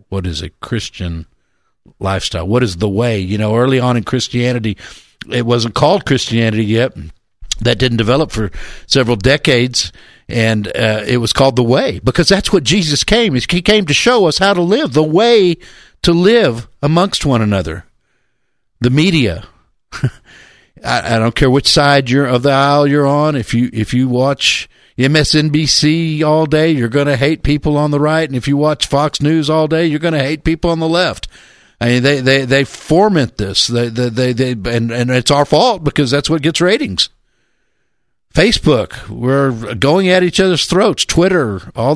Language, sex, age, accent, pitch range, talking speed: English, male, 50-69, American, 120-165 Hz, 185 wpm